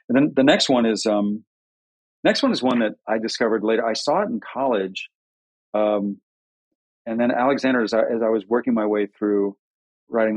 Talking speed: 195 wpm